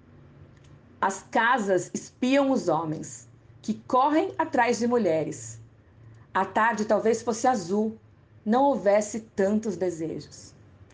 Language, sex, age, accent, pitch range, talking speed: Portuguese, female, 40-59, Brazilian, 170-245 Hz, 105 wpm